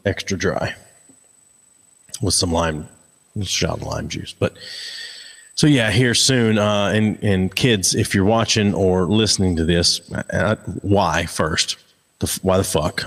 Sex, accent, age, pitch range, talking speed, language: male, American, 30-49, 90-110 Hz, 145 wpm, English